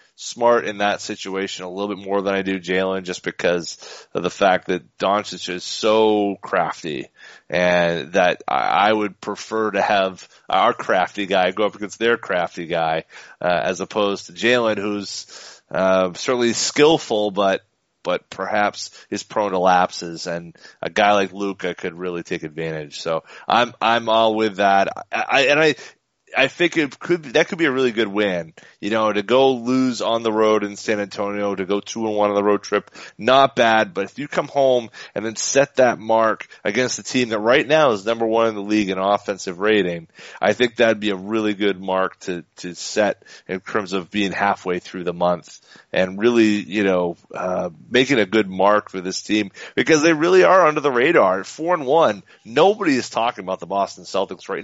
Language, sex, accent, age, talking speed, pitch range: English, male, American, 30-49, 200 wpm, 95-115 Hz